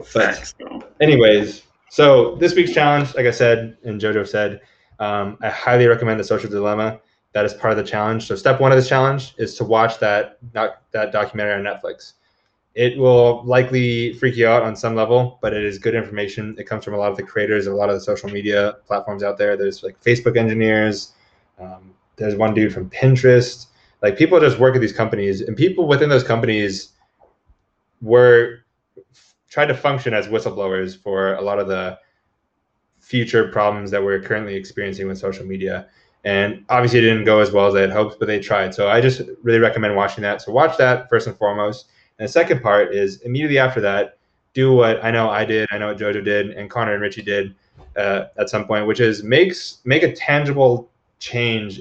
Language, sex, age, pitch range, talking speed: English, male, 20-39, 100-120 Hz, 205 wpm